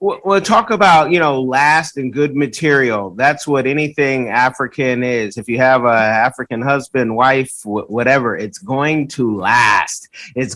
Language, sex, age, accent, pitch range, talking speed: English, male, 30-49, American, 120-155 Hz, 160 wpm